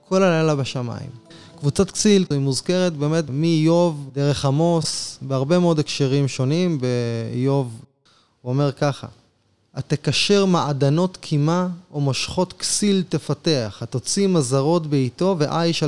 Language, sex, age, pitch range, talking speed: Hebrew, male, 20-39, 125-170 Hz, 115 wpm